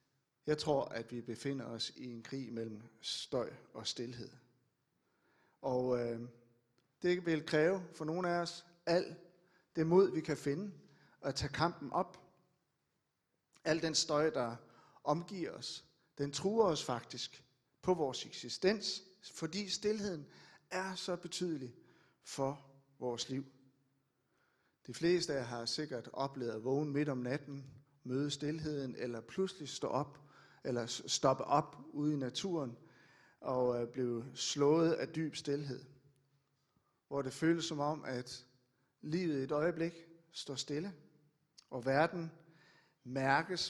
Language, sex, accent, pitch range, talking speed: Danish, male, native, 130-165 Hz, 135 wpm